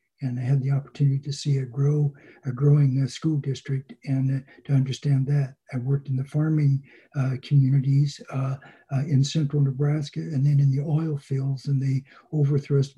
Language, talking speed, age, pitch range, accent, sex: English, 175 wpm, 60-79, 135-145 Hz, American, male